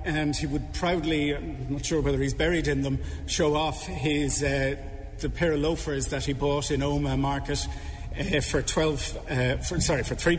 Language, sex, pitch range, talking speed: English, male, 130-155 Hz, 195 wpm